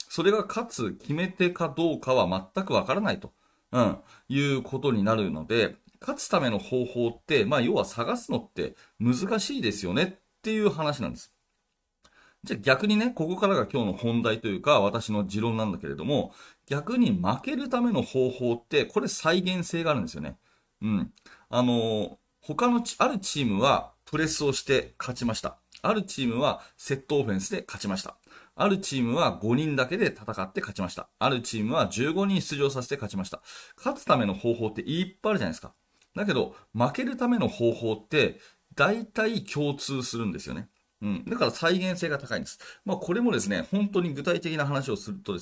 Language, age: Japanese, 40-59